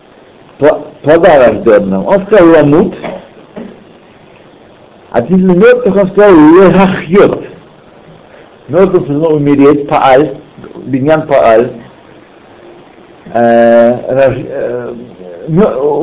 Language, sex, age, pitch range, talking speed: Russian, male, 60-79, 150-215 Hz, 100 wpm